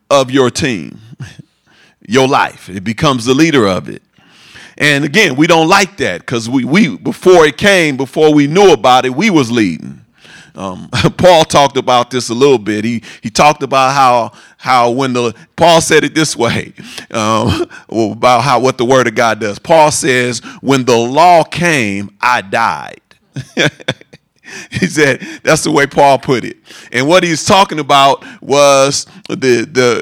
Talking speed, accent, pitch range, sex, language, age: 170 wpm, American, 130-170 Hz, male, English, 40-59